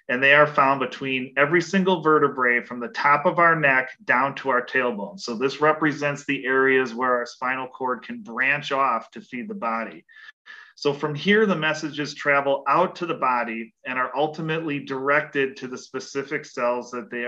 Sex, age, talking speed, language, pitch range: male, 40-59, 190 wpm, English, 130-165 Hz